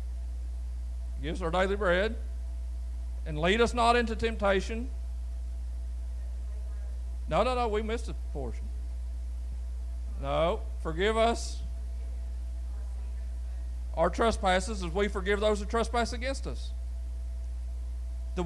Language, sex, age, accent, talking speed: English, male, 40-59, American, 105 wpm